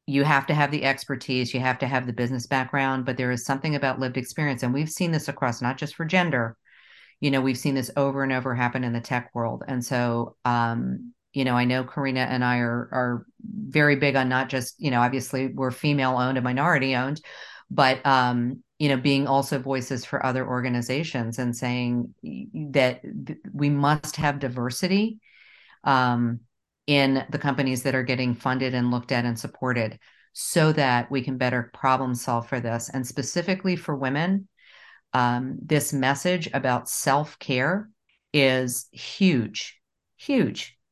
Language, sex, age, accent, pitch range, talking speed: English, female, 40-59, American, 125-145 Hz, 175 wpm